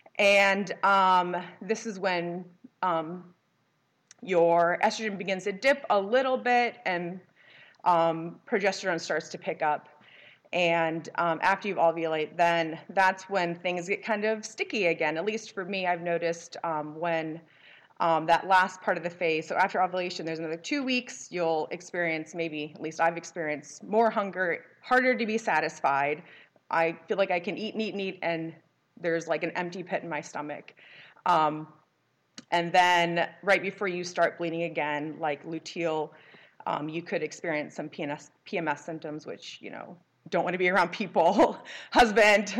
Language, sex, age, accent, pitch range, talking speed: English, female, 30-49, American, 165-200 Hz, 165 wpm